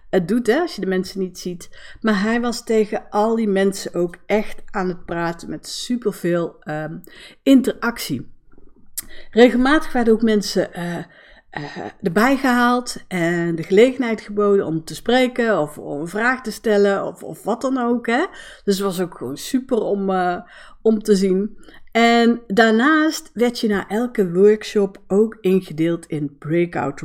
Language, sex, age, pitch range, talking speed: Dutch, female, 60-79, 175-230 Hz, 165 wpm